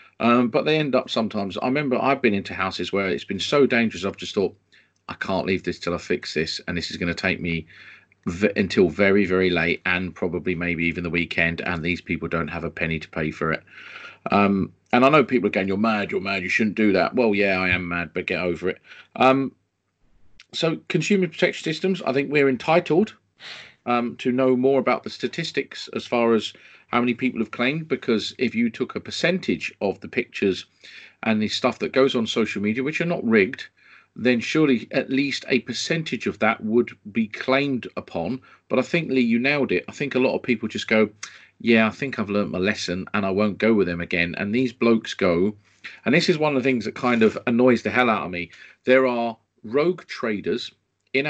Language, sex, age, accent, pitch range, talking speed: English, male, 40-59, British, 95-130 Hz, 220 wpm